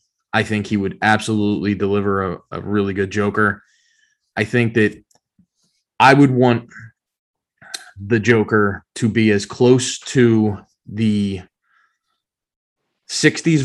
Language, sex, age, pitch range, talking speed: English, male, 20-39, 105-120 Hz, 115 wpm